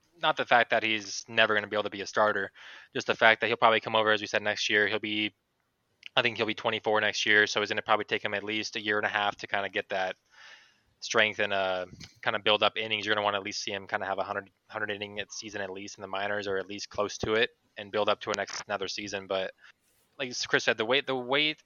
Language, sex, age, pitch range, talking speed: English, male, 20-39, 100-110 Hz, 295 wpm